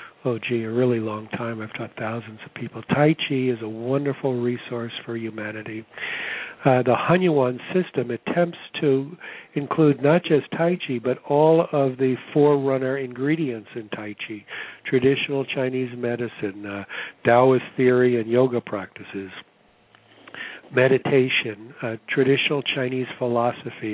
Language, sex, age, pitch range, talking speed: English, male, 60-79, 115-135 Hz, 135 wpm